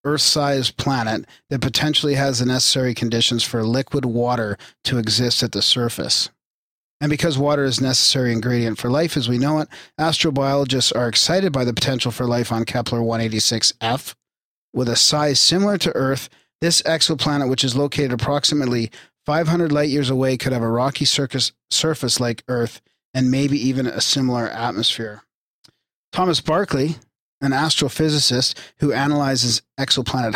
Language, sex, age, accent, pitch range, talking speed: English, male, 40-59, American, 120-150 Hz, 145 wpm